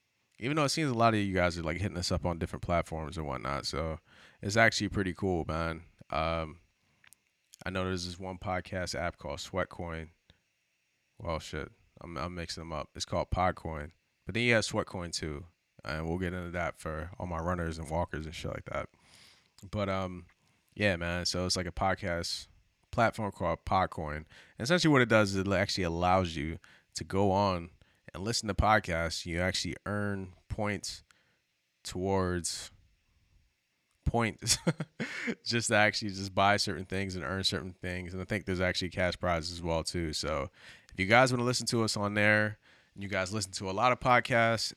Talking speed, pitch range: 190 wpm, 85-105 Hz